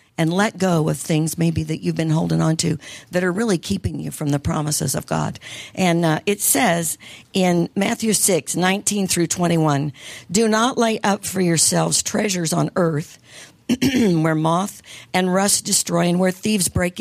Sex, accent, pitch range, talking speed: female, American, 155-195 Hz, 175 wpm